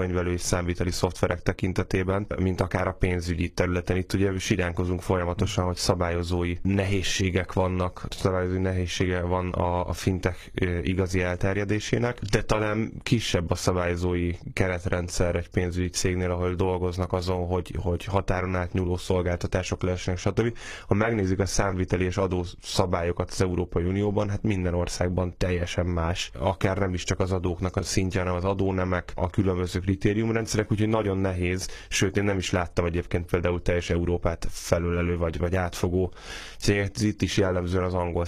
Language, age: Hungarian, 10-29